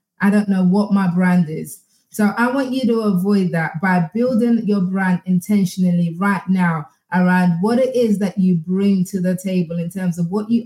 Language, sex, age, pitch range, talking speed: English, female, 20-39, 180-215 Hz, 205 wpm